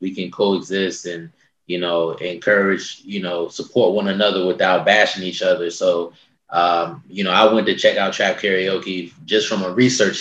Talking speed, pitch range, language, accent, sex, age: 180 wpm, 90-120 Hz, English, American, male, 20-39